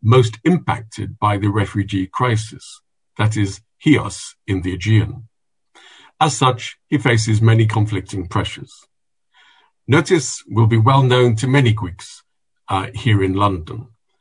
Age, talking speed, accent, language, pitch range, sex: 50-69, 130 wpm, British, English, 105-130 Hz, male